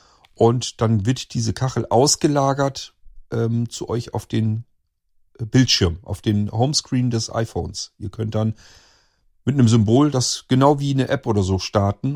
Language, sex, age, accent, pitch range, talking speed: German, male, 40-59, German, 105-130 Hz, 155 wpm